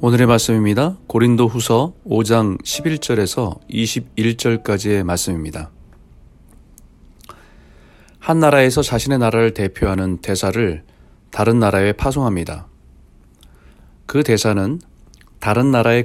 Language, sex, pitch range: Korean, male, 85-125 Hz